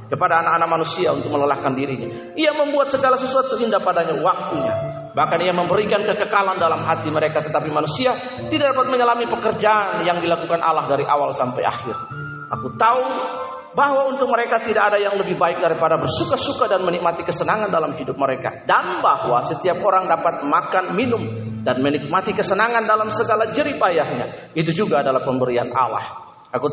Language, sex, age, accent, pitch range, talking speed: Indonesian, male, 40-59, native, 145-215 Hz, 155 wpm